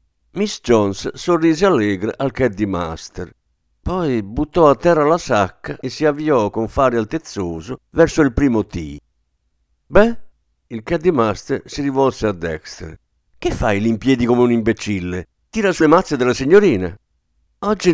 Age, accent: 50-69, native